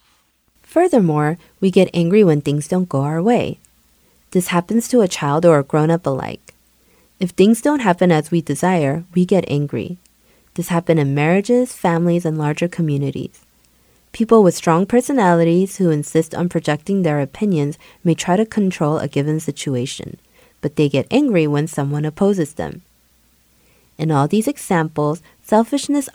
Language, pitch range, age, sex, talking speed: English, 145-185 Hz, 30-49, female, 155 wpm